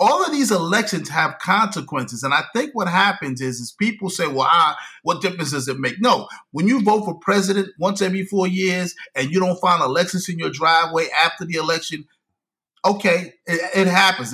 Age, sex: 30-49, male